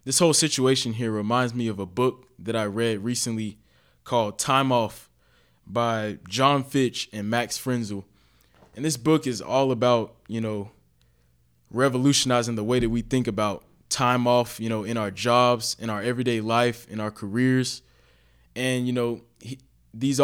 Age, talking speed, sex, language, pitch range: 20-39, 165 wpm, male, English, 105-125 Hz